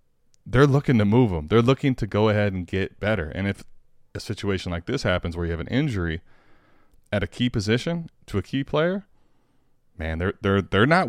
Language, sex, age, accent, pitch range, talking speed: English, male, 20-39, American, 90-120 Hz, 205 wpm